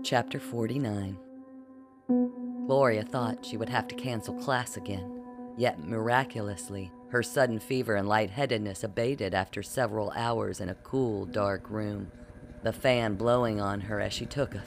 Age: 40-59